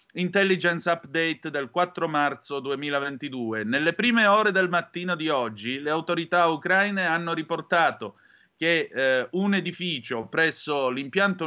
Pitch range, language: 130-170 Hz, Italian